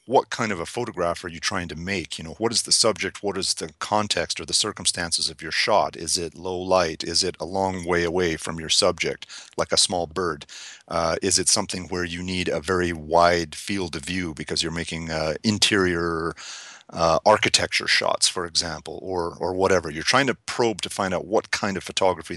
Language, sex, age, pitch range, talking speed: English, male, 40-59, 80-95 Hz, 215 wpm